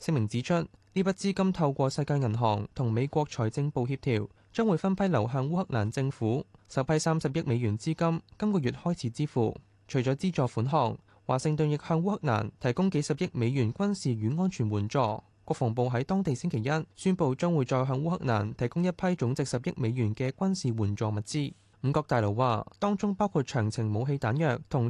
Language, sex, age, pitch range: Chinese, male, 20-39, 115-165 Hz